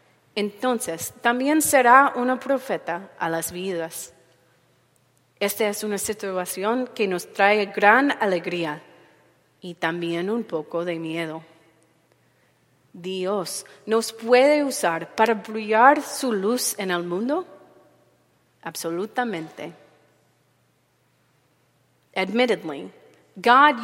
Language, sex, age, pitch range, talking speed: English, female, 30-49, 175-245 Hz, 95 wpm